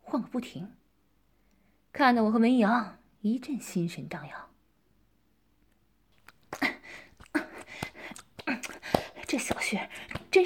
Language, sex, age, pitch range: Chinese, female, 20-39, 190-255 Hz